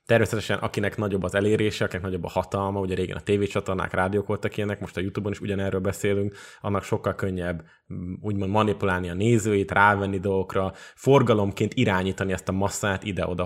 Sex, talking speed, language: male, 165 wpm, Hungarian